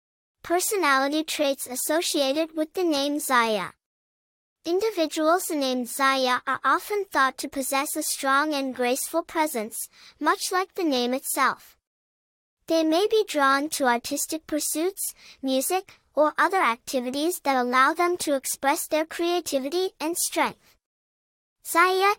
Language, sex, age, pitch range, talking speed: English, male, 10-29, 270-335 Hz, 125 wpm